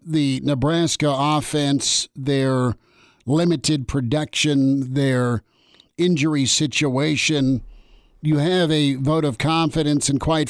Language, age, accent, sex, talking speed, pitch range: English, 50-69, American, male, 95 wpm, 130-150 Hz